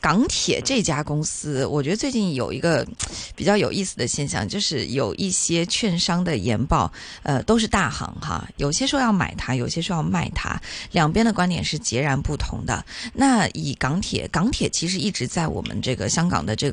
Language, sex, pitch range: Chinese, female, 130-195 Hz